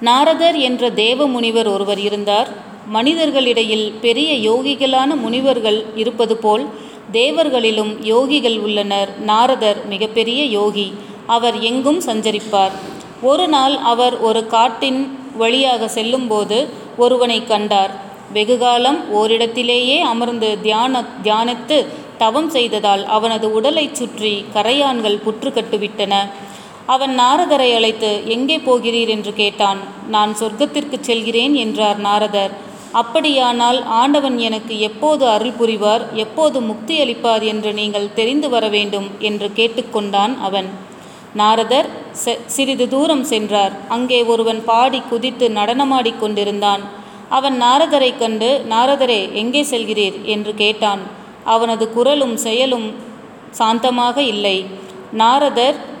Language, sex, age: Tamil, female, 30-49